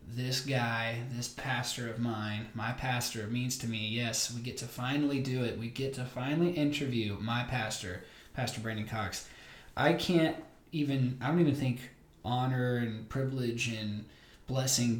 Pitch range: 115-130 Hz